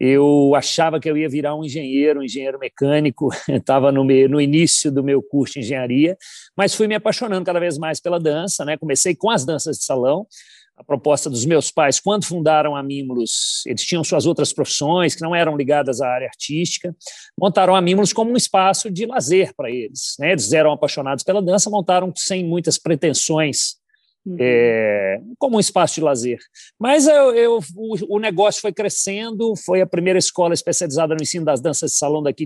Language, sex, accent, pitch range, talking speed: Portuguese, male, Brazilian, 145-185 Hz, 190 wpm